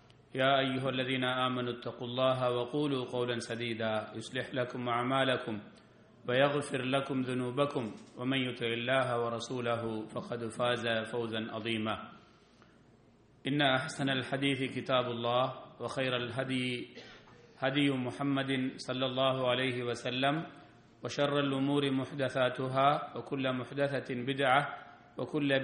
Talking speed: 100 wpm